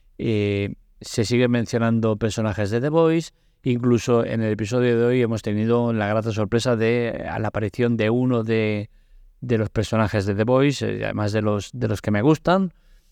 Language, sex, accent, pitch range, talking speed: Spanish, male, Spanish, 105-125 Hz, 190 wpm